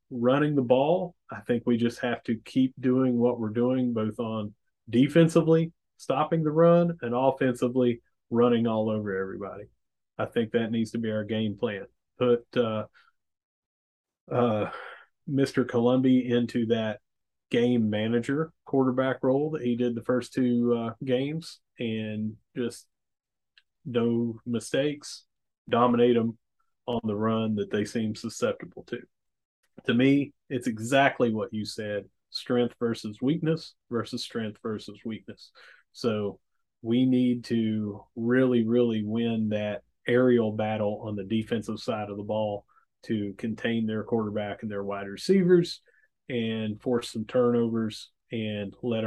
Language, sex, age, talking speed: English, male, 30-49, 140 wpm